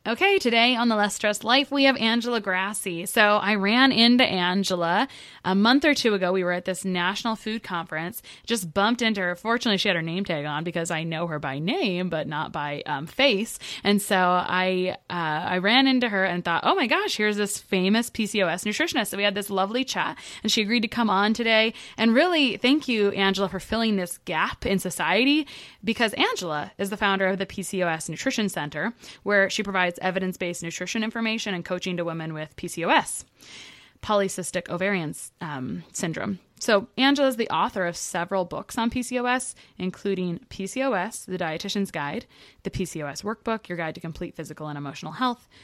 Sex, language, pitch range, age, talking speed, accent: female, English, 175-230 Hz, 20-39, 190 wpm, American